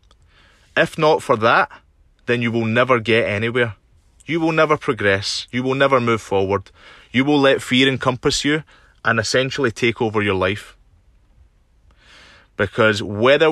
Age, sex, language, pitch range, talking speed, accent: 20-39, male, English, 90-130 Hz, 145 wpm, British